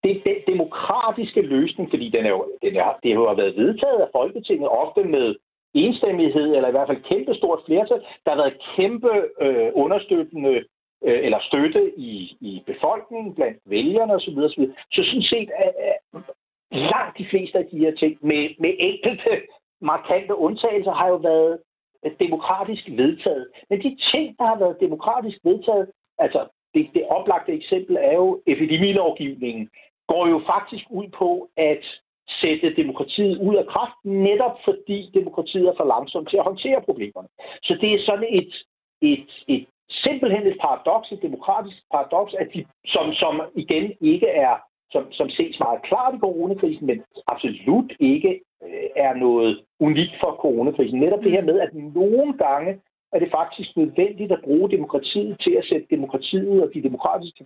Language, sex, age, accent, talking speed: Danish, male, 60-79, native, 165 wpm